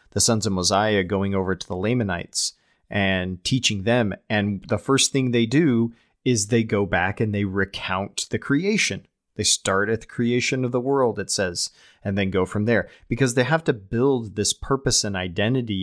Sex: male